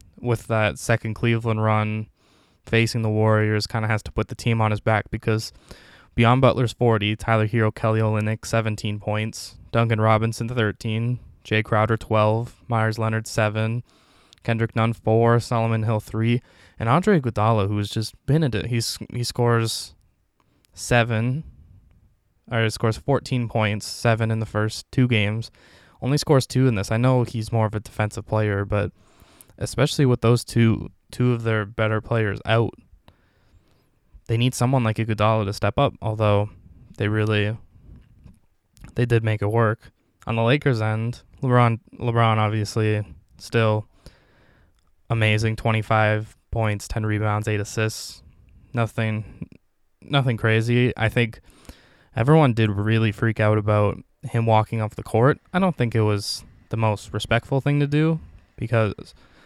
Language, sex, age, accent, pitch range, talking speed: English, male, 10-29, American, 105-115 Hz, 150 wpm